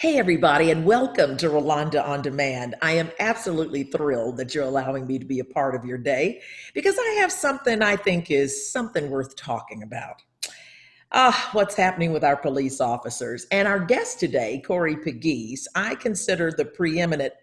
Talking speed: 175 wpm